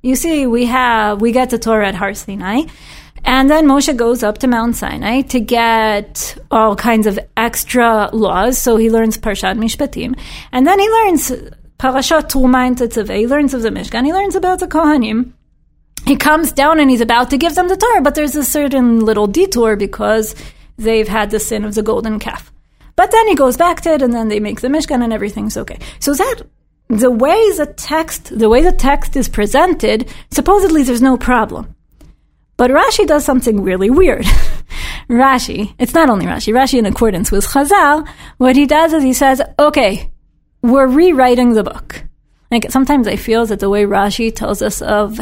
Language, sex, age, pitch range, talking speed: English, female, 30-49, 220-280 Hz, 190 wpm